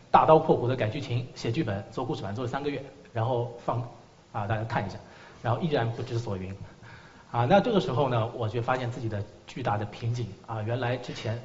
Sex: male